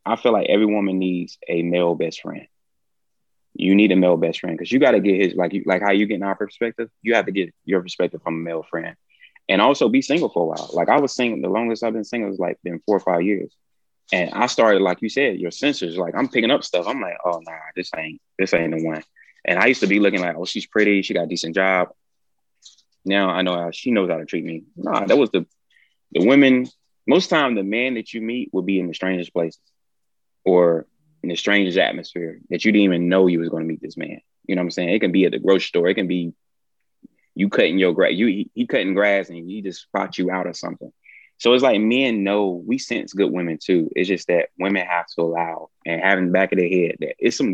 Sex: male